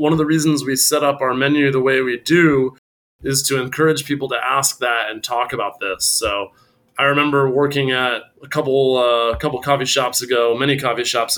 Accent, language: American, English